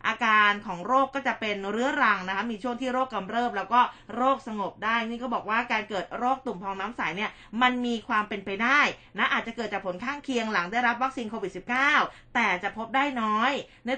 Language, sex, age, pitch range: Thai, female, 20-39, 195-250 Hz